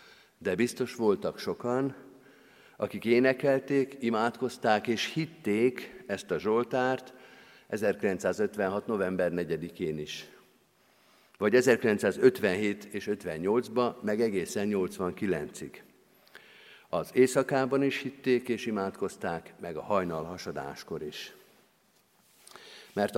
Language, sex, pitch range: Hungarian, male, 110-135 Hz